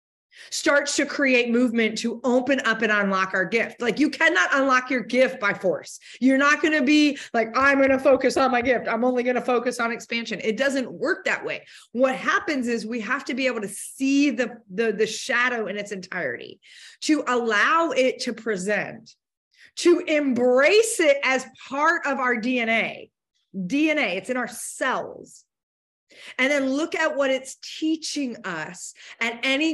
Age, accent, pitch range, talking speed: 30-49, American, 200-265 Hz, 180 wpm